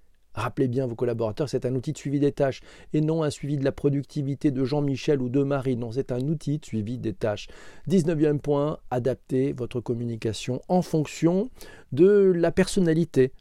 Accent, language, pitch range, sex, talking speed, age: French, French, 120-155 Hz, male, 190 wpm, 40-59